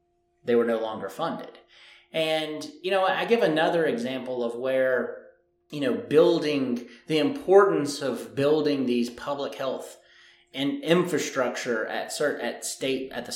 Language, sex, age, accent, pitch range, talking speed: English, male, 30-49, American, 120-160 Hz, 145 wpm